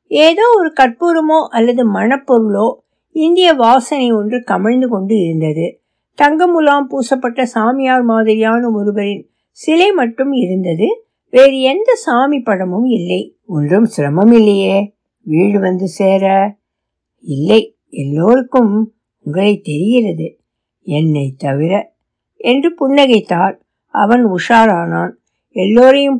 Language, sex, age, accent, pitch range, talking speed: Tamil, female, 60-79, native, 190-270 Hz, 90 wpm